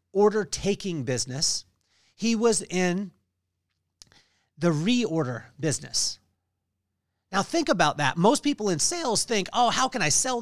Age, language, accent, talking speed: 40-59, English, American, 125 wpm